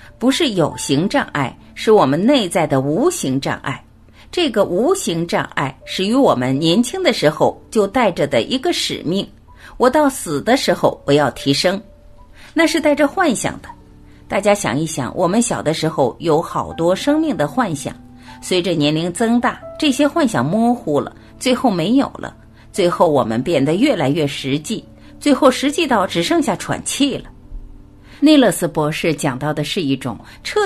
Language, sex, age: Chinese, female, 50-69